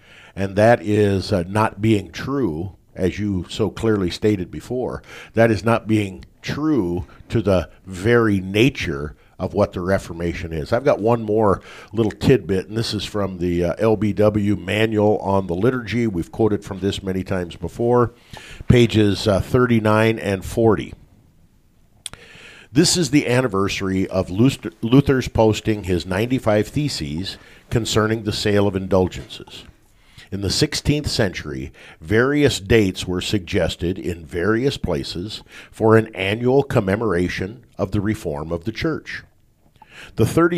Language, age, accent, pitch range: English, 50-69, American, 95-115 Hz